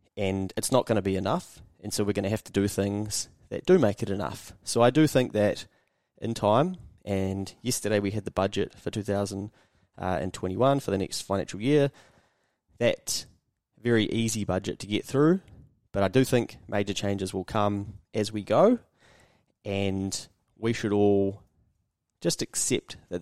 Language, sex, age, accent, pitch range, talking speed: English, male, 20-39, Australian, 95-115 Hz, 170 wpm